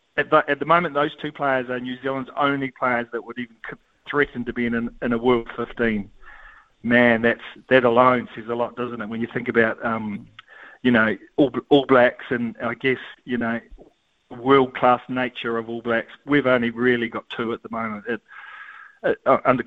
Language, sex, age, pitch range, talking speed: English, male, 40-59, 120-135 Hz, 200 wpm